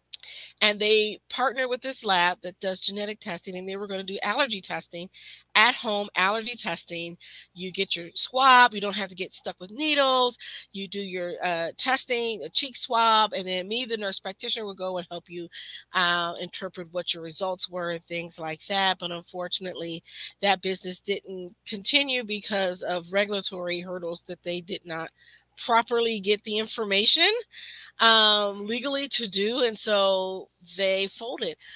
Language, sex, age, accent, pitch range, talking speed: English, female, 40-59, American, 180-230 Hz, 165 wpm